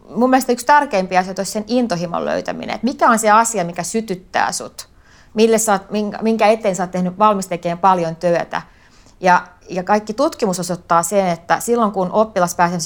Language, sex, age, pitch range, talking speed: Finnish, female, 30-49, 170-215 Hz, 170 wpm